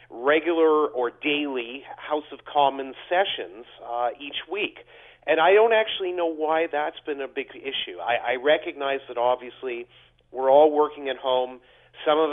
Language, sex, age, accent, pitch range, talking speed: English, male, 40-59, American, 140-195 Hz, 160 wpm